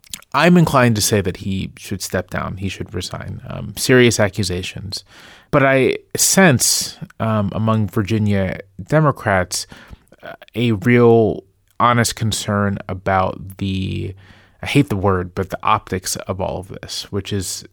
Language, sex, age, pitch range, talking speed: English, male, 30-49, 95-110 Hz, 140 wpm